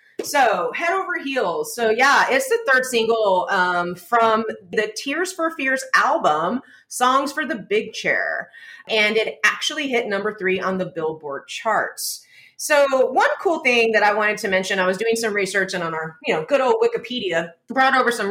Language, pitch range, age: English, 175-265 Hz, 30-49